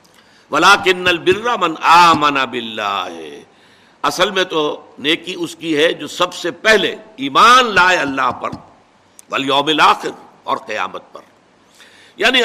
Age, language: 60-79, Urdu